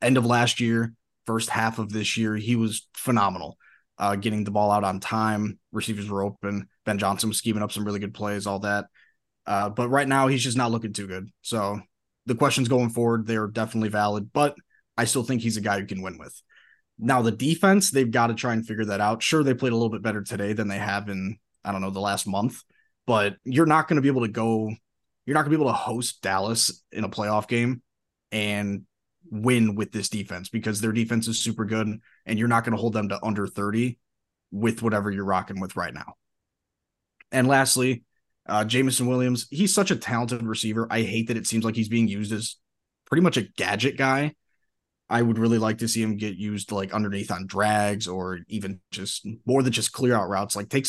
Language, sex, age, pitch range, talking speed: English, male, 20-39, 100-120 Hz, 225 wpm